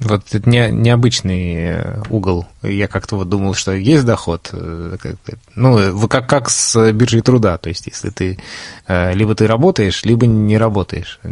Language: Russian